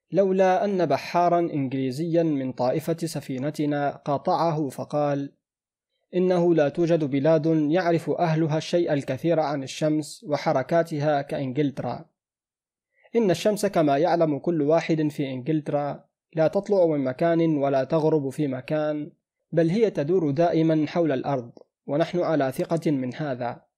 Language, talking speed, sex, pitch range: Arabic, 120 wpm, male, 145-170 Hz